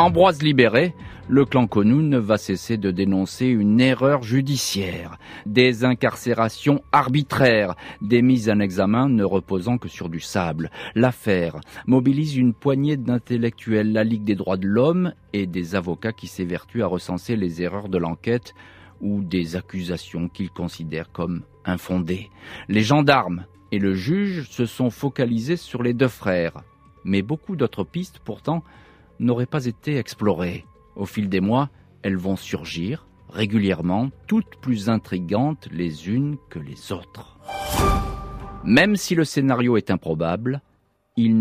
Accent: French